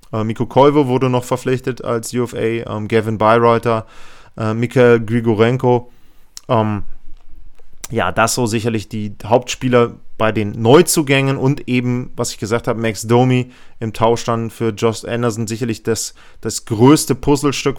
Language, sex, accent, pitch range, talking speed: German, male, German, 115-130 Hz, 145 wpm